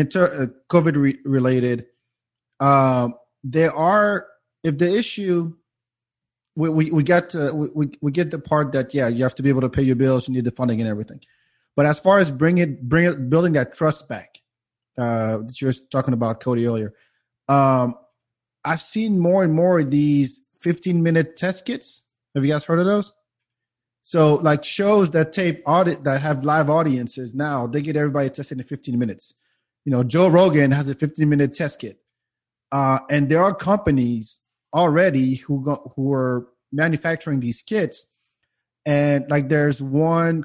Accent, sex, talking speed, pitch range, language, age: American, male, 175 wpm, 130-160 Hz, English, 30-49